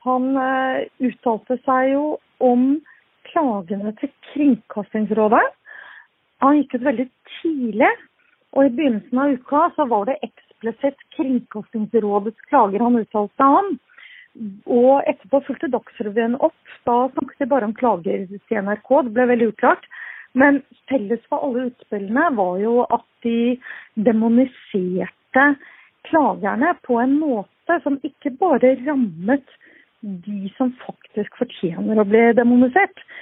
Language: English